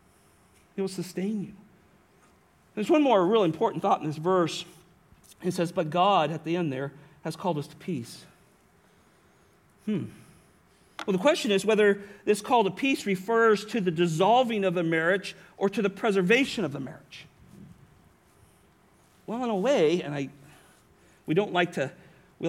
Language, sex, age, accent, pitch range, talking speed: English, male, 40-59, American, 180-220 Hz, 160 wpm